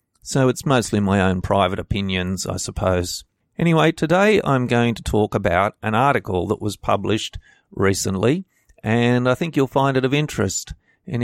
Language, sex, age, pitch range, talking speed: English, male, 50-69, 100-130 Hz, 165 wpm